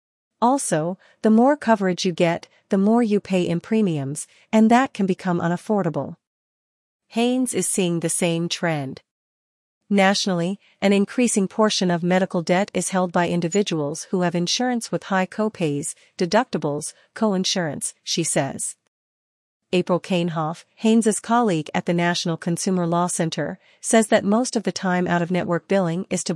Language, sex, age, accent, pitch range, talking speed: English, female, 40-59, American, 170-205 Hz, 145 wpm